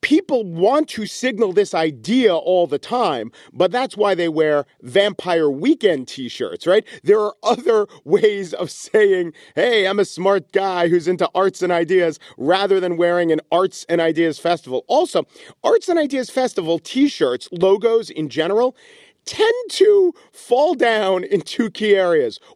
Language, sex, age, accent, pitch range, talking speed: English, male, 40-59, American, 155-260 Hz, 155 wpm